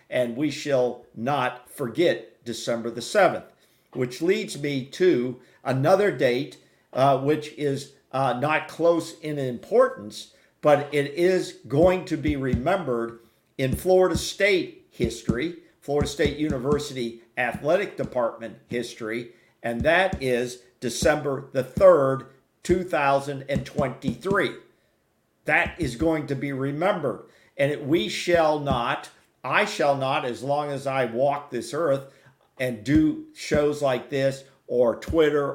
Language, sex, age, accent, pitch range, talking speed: English, male, 50-69, American, 130-170 Hz, 125 wpm